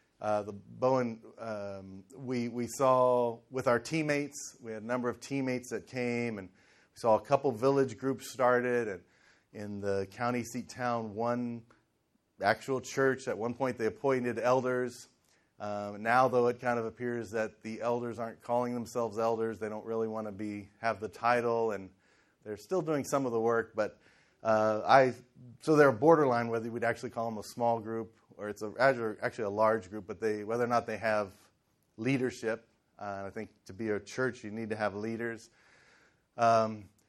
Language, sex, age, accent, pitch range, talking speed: English, male, 30-49, American, 110-130 Hz, 185 wpm